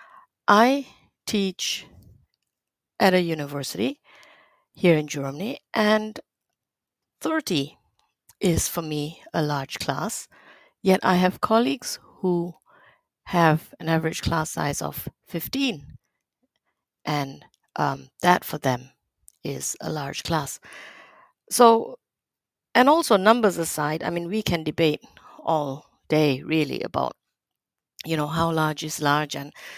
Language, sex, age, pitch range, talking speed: English, female, 60-79, 150-200 Hz, 115 wpm